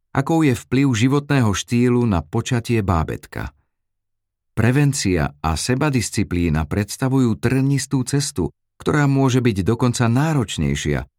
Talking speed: 100 wpm